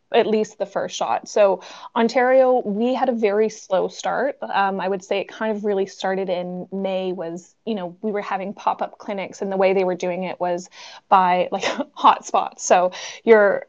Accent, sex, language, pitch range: American, female, English, 195-225 Hz